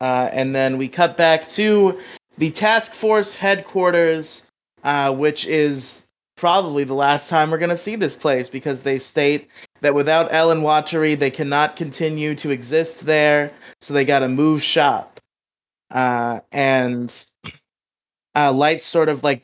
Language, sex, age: English, male, 20-39